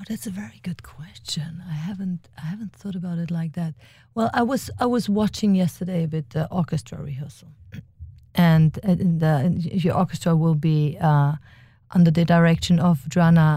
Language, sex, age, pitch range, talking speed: English, female, 40-59, 140-210 Hz, 170 wpm